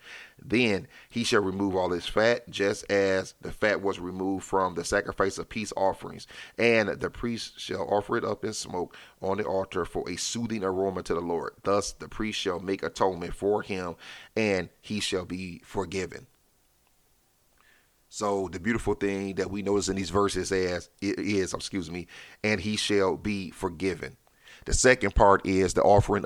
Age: 30-49